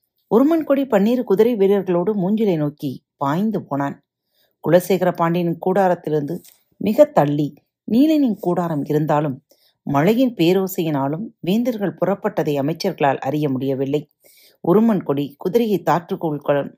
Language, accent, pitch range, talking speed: Tamil, native, 140-195 Hz, 95 wpm